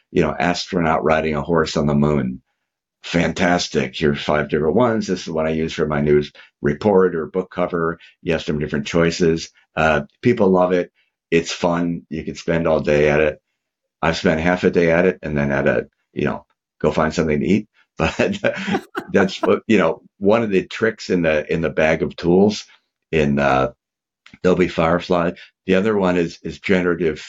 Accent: American